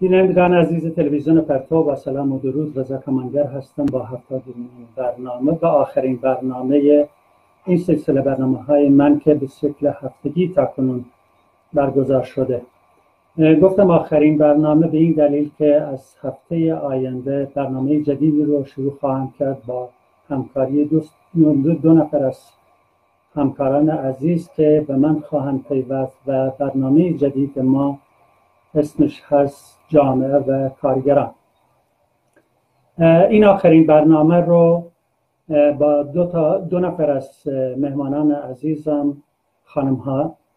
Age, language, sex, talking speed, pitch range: 50-69, Persian, male, 120 wpm, 130-155 Hz